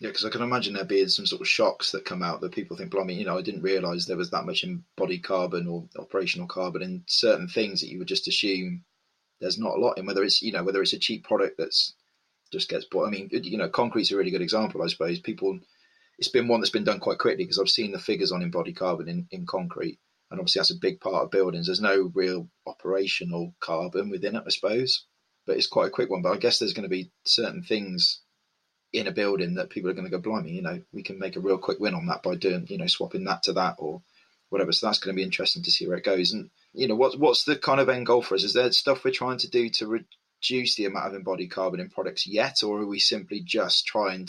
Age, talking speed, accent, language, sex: 20-39, 270 wpm, British, English, male